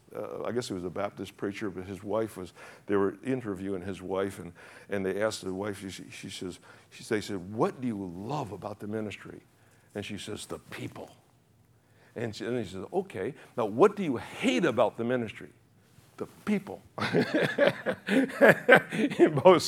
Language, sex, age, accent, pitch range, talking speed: English, male, 60-79, American, 115-170 Hz, 185 wpm